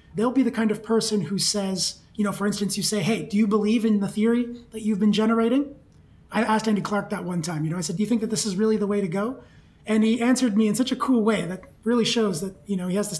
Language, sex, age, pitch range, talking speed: English, male, 30-49, 195-230 Hz, 295 wpm